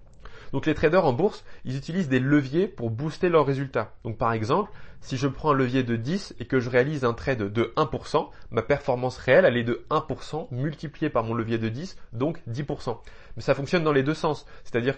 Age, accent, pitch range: 20-39, French, 125-160 Hz